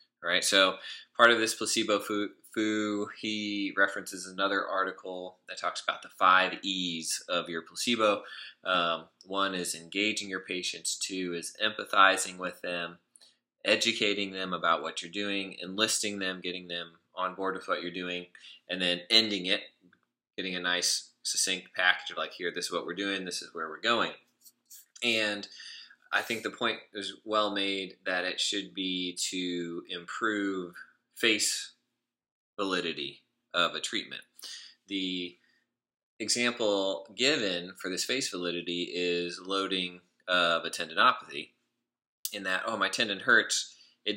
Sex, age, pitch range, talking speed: male, 20-39, 90-105 Hz, 145 wpm